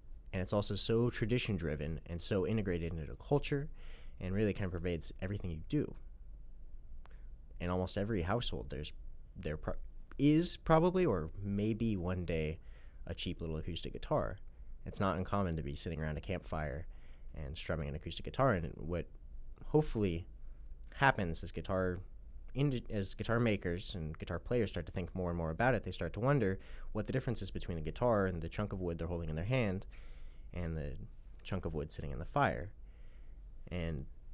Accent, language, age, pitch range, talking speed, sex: American, English, 20-39, 75-100 Hz, 175 wpm, male